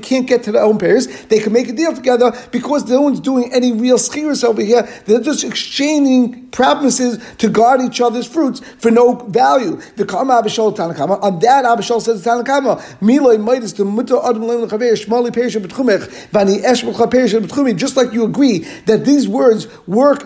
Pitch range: 220-255 Hz